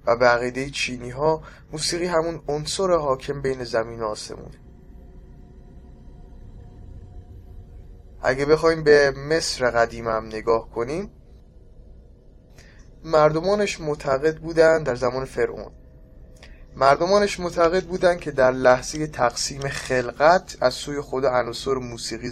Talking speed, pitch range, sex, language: 100 wpm, 110-140 Hz, male, Persian